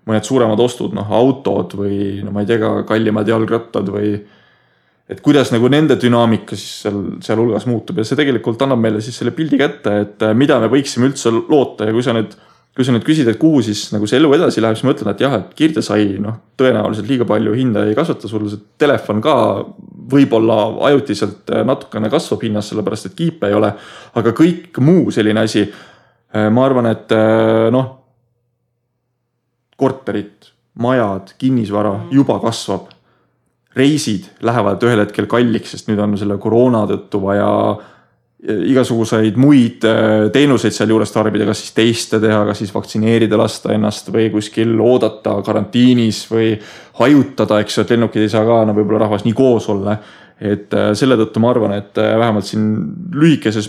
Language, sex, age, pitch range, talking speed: English, male, 20-39, 105-125 Hz, 160 wpm